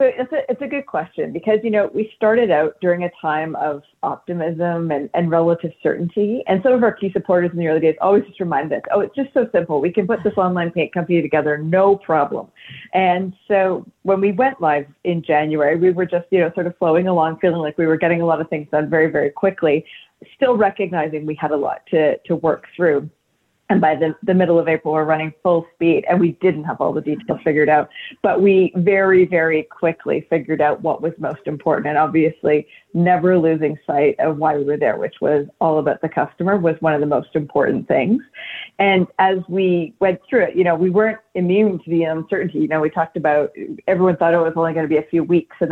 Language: English